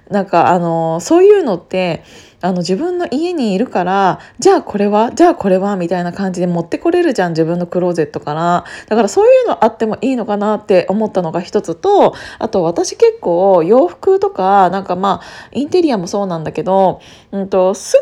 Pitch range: 180-275 Hz